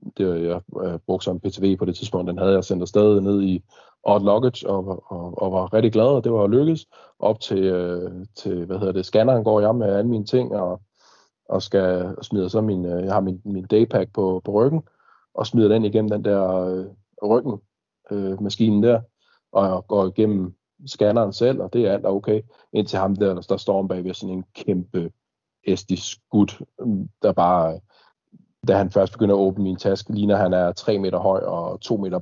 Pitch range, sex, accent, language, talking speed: 95-105 Hz, male, native, Danish, 210 wpm